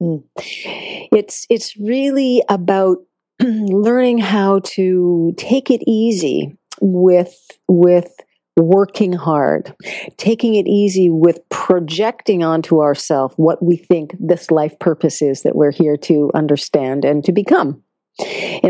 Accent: American